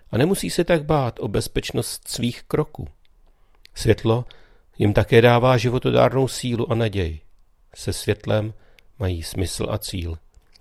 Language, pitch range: Czech, 95-120 Hz